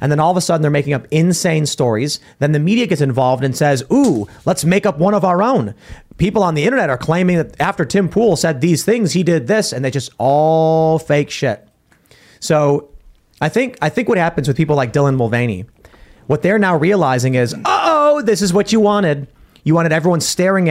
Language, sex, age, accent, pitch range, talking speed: English, male, 30-49, American, 130-175 Hz, 220 wpm